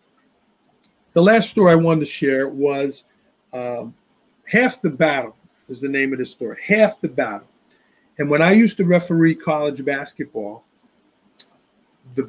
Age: 40-59